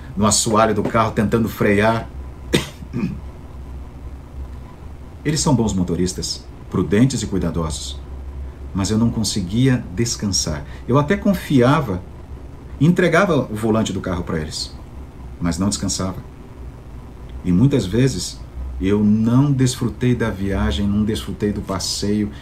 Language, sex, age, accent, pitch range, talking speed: Portuguese, male, 50-69, Brazilian, 70-110 Hz, 115 wpm